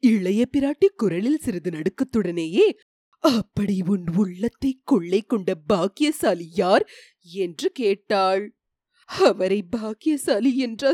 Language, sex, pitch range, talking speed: Tamil, female, 215-350 Hz, 90 wpm